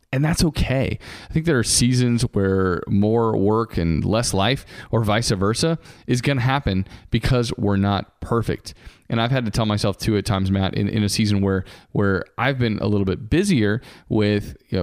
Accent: American